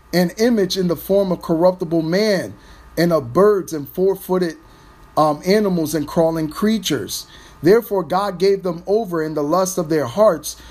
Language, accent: English, American